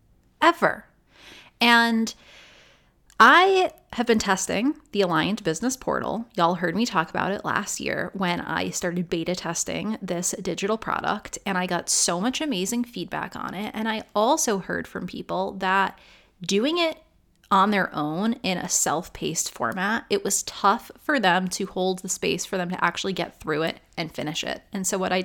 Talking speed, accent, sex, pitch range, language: 175 wpm, American, female, 180-240 Hz, English